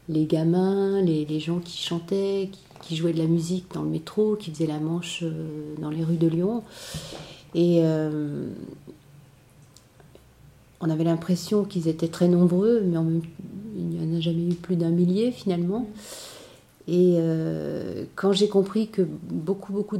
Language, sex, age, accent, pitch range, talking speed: French, female, 40-59, French, 165-190 Hz, 165 wpm